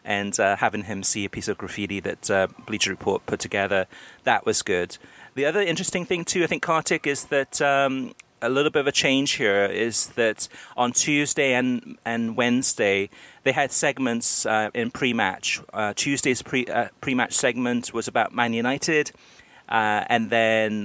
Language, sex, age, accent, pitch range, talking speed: English, male, 30-49, British, 105-125 Hz, 180 wpm